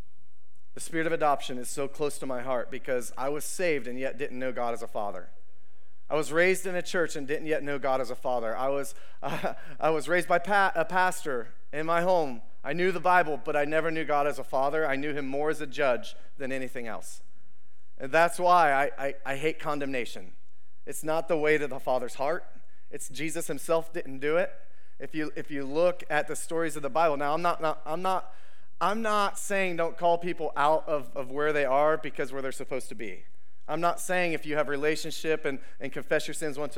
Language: English